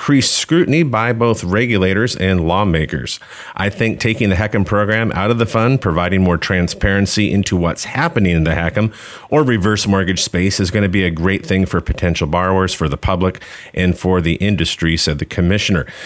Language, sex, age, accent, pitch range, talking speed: English, male, 40-59, American, 90-115 Hz, 185 wpm